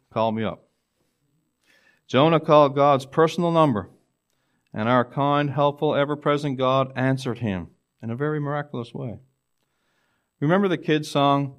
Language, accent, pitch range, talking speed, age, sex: English, American, 95-140 Hz, 130 wpm, 40-59, male